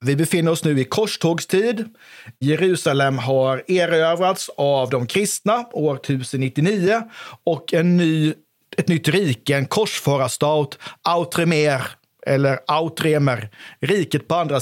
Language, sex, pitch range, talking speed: Swedish, male, 140-185 Hz, 110 wpm